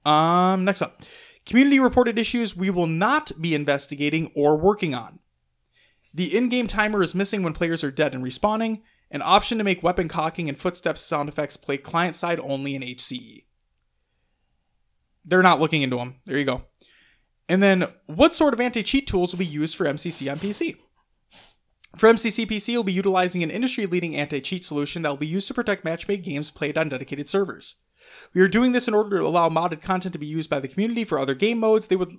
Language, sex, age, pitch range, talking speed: English, male, 20-39, 145-200 Hz, 195 wpm